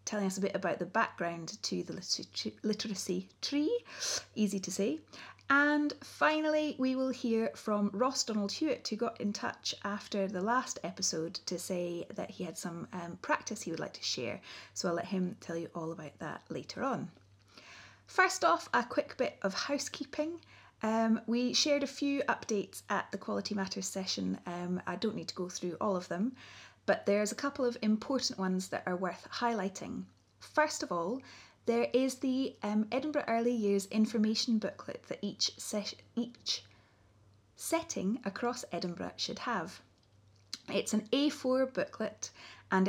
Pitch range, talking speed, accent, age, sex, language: 180-245 Hz, 165 wpm, British, 30-49, female, English